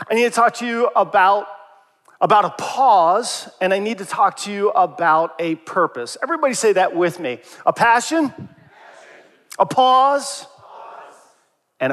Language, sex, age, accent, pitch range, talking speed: English, male, 40-59, American, 175-230 Hz, 150 wpm